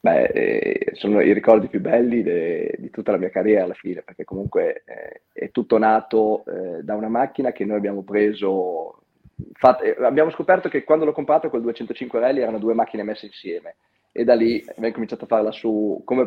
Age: 30-49